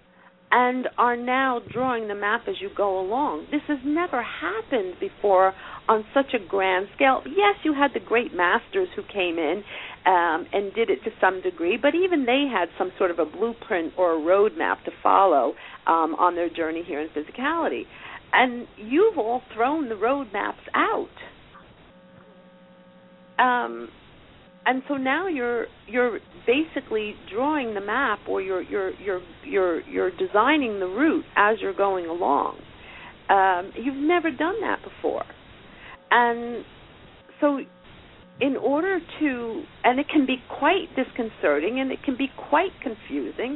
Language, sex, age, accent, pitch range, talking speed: English, female, 50-69, American, 195-295 Hz, 155 wpm